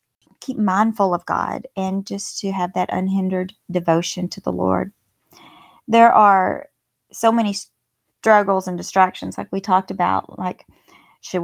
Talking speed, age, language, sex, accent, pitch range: 140 wpm, 40-59, English, female, American, 190-225 Hz